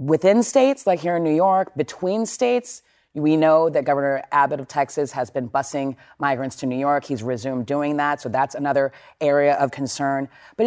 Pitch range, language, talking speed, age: 130-165 Hz, English, 190 wpm, 30-49